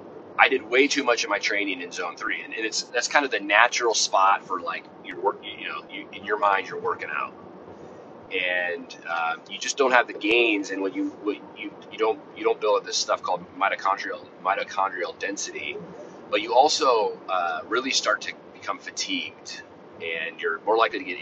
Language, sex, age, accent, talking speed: English, male, 30-49, American, 205 wpm